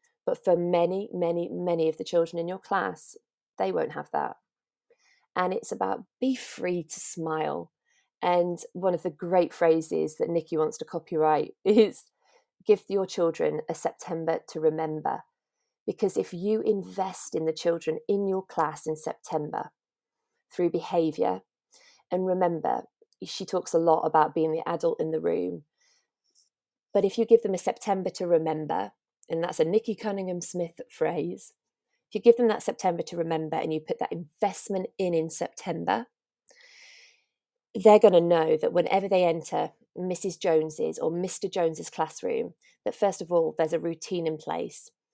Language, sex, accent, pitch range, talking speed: English, female, British, 165-220 Hz, 165 wpm